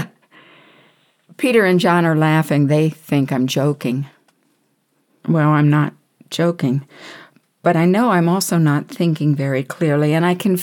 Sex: female